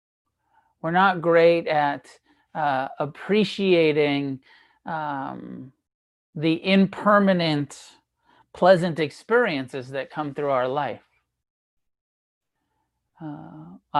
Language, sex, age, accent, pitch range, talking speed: English, male, 40-59, American, 145-190 Hz, 75 wpm